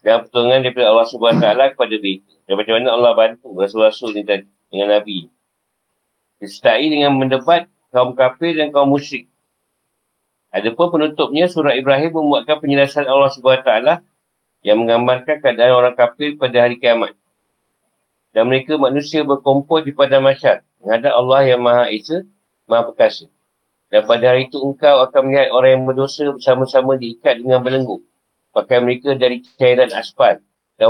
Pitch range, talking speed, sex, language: 110-140 Hz, 140 wpm, male, Malay